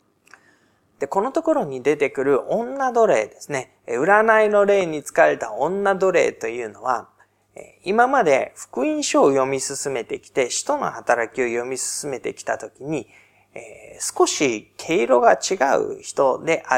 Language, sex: Japanese, male